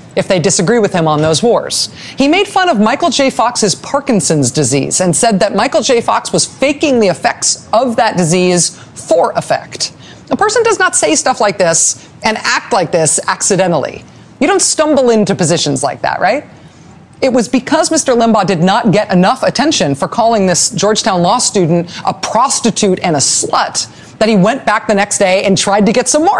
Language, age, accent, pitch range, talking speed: English, 30-49, American, 180-250 Hz, 200 wpm